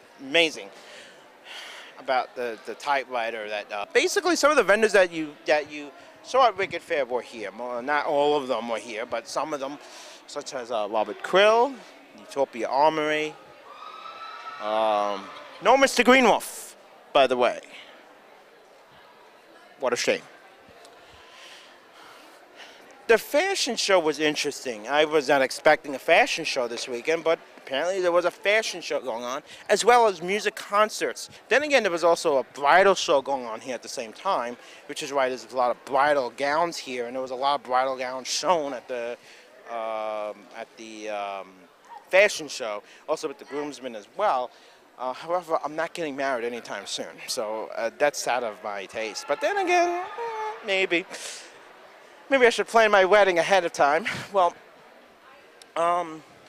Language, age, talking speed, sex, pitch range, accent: English, 30-49, 165 wpm, male, 135-210 Hz, American